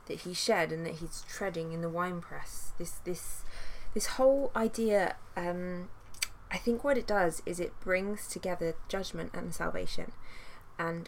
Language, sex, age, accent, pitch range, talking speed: English, female, 20-39, British, 165-190 Hz, 155 wpm